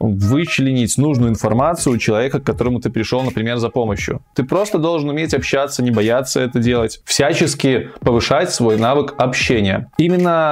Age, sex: 20-39, male